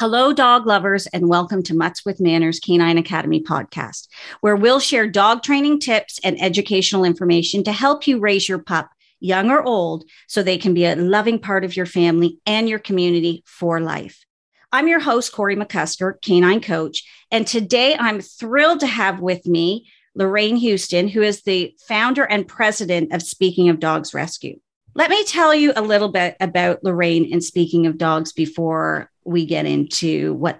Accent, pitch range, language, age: American, 170-230 Hz, English, 40-59